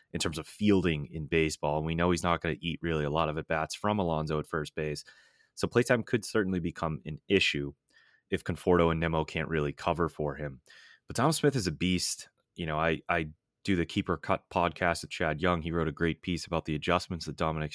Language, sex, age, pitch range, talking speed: English, male, 30-49, 80-95 Hz, 235 wpm